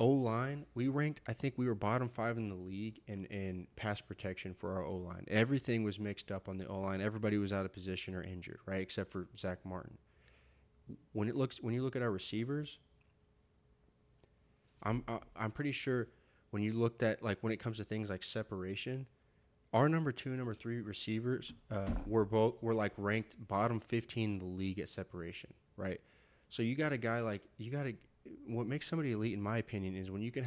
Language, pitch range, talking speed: English, 100-125 Hz, 210 wpm